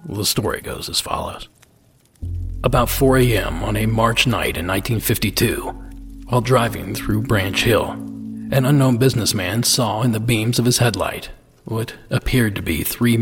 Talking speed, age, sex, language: 155 wpm, 40-59, male, English